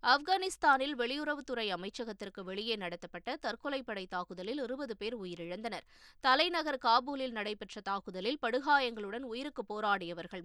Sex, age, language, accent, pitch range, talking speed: female, 20-39, Tamil, native, 195-265 Hz, 100 wpm